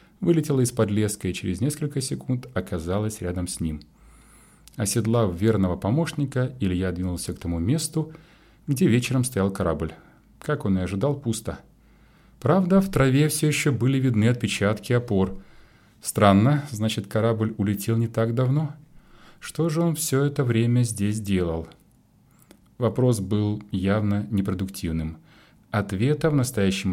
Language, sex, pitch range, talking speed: Russian, male, 95-135 Hz, 130 wpm